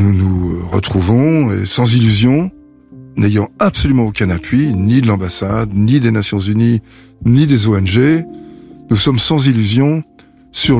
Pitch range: 100-135 Hz